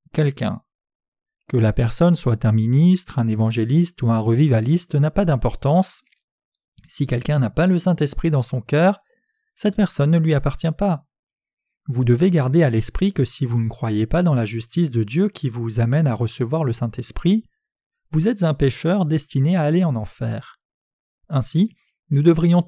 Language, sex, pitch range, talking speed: French, male, 120-175 Hz, 175 wpm